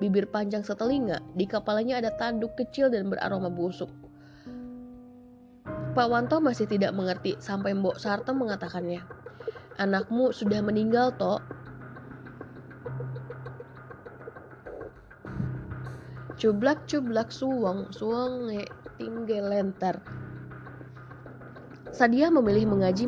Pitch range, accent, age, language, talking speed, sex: 180-225 Hz, native, 20-39, Indonesian, 80 wpm, female